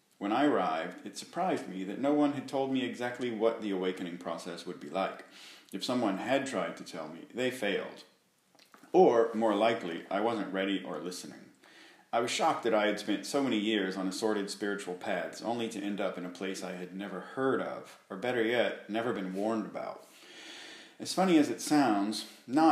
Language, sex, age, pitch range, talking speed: English, male, 40-59, 95-115 Hz, 200 wpm